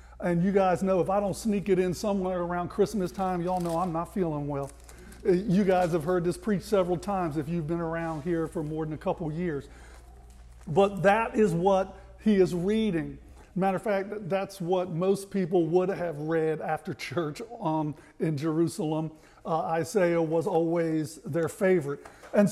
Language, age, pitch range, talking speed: English, 50-69, 165-210 Hz, 185 wpm